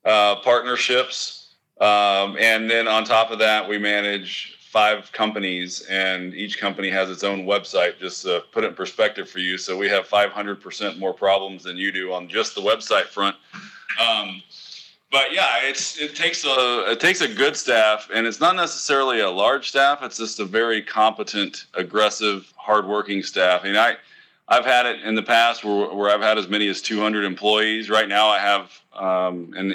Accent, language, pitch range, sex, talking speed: American, English, 100-110 Hz, male, 190 wpm